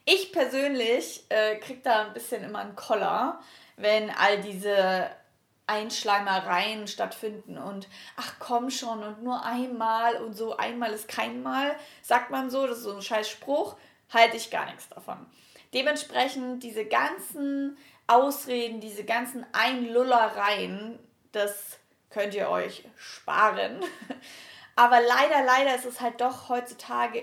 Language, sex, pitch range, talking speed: German, female, 205-250 Hz, 135 wpm